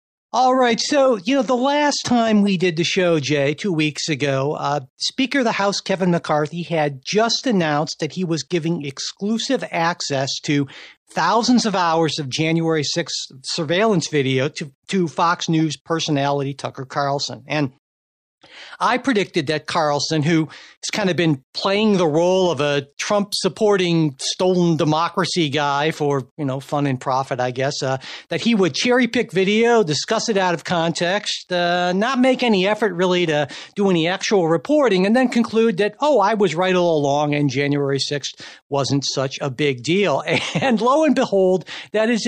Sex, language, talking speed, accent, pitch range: male, English, 175 wpm, American, 145-205 Hz